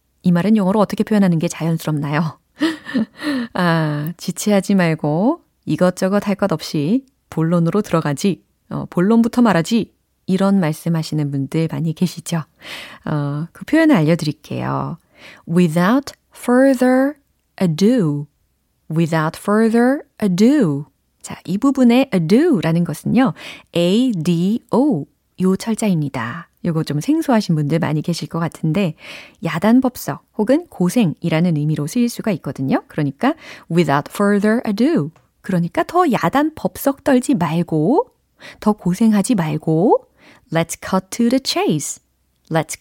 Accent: native